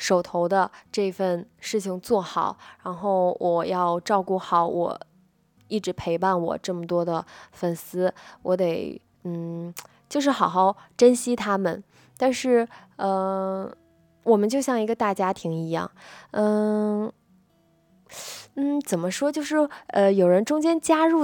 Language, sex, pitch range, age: Chinese, female, 175-245 Hz, 20-39